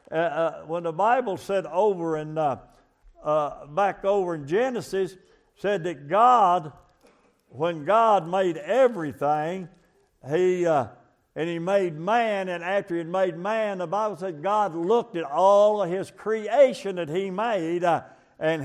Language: English